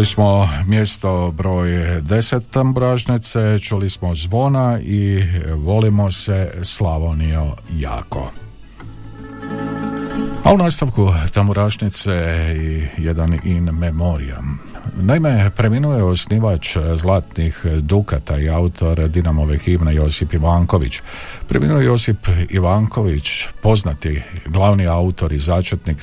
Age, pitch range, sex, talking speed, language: 50-69, 85-105 Hz, male, 100 wpm, Croatian